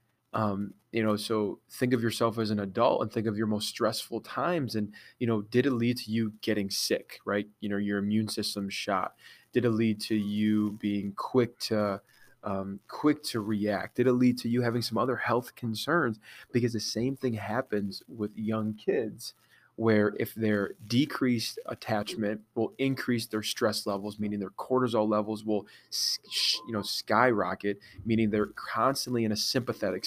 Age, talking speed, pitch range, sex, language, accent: 20-39, 175 wpm, 105-120 Hz, male, English, American